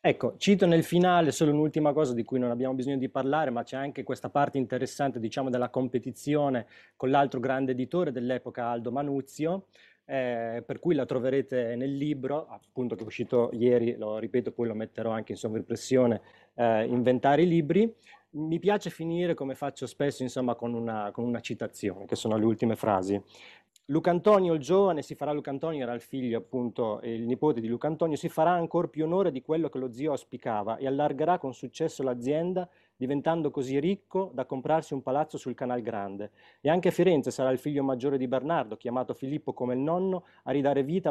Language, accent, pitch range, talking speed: Italian, native, 120-150 Hz, 190 wpm